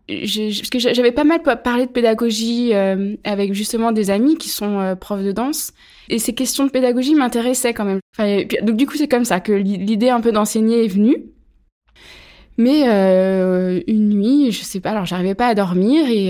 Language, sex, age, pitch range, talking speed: French, female, 20-39, 195-245 Hz, 205 wpm